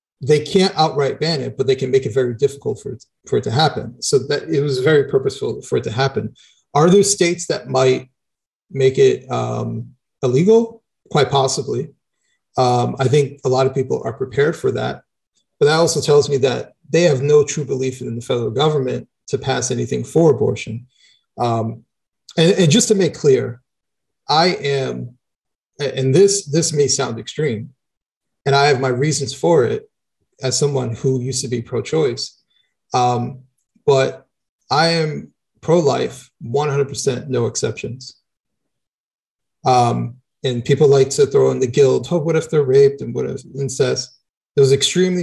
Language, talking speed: English, 170 wpm